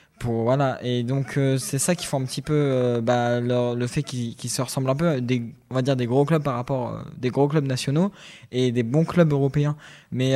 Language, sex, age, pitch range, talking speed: French, male, 20-39, 120-145 Hz, 250 wpm